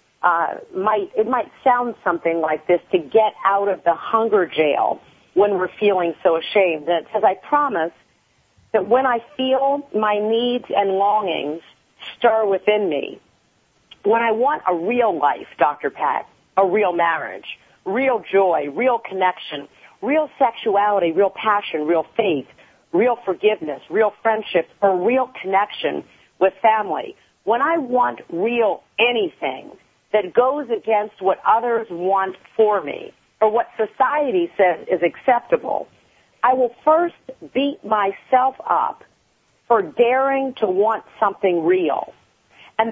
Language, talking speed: English, 135 wpm